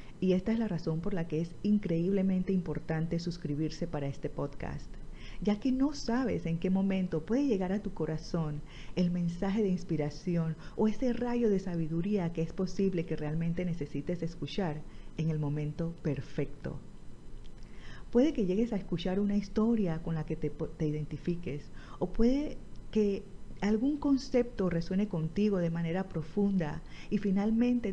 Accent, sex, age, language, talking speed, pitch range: American, female, 40-59, Spanish, 155 wpm, 155-195 Hz